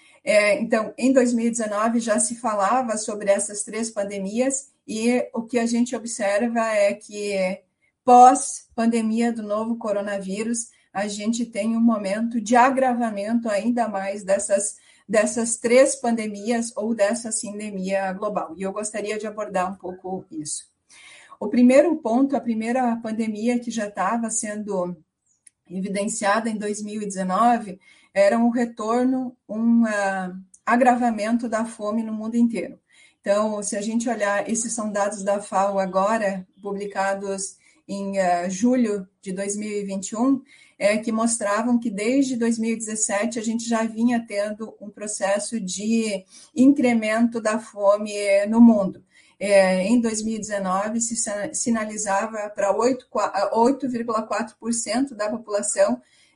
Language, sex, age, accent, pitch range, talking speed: Portuguese, female, 40-59, Brazilian, 200-235 Hz, 120 wpm